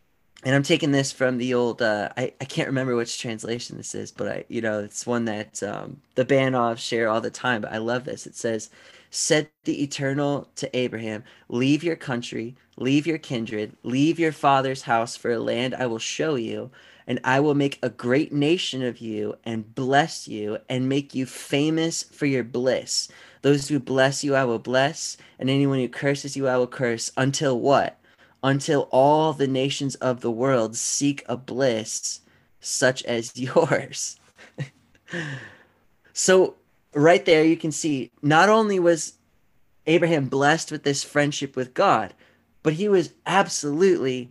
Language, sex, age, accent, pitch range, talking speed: English, male, 20-39, American, 125-160 Hz, 170 wpm